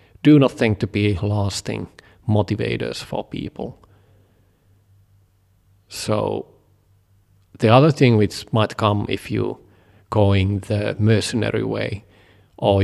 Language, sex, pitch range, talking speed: English, male, 100-110 Hz, 110 wpm